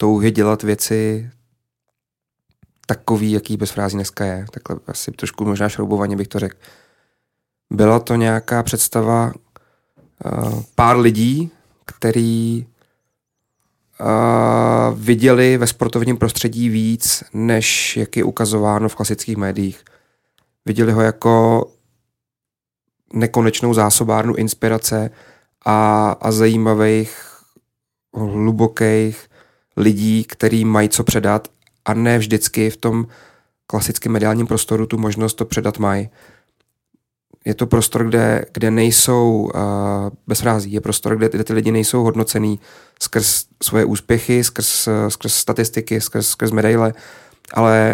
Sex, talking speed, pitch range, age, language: male, 115 wpm, 110-115 Hz, 30-49, Czech